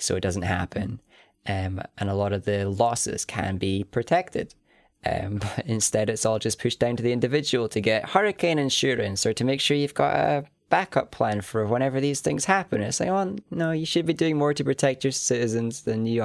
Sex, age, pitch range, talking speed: male, 20-39, 105-140 Hz, 220 wpm